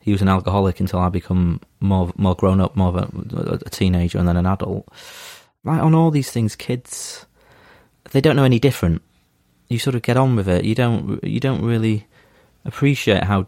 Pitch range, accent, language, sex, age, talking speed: 90-115 Hz, British, English, male, 30-49, 200 wpm